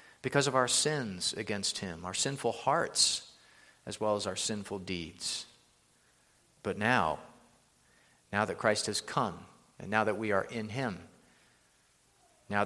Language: English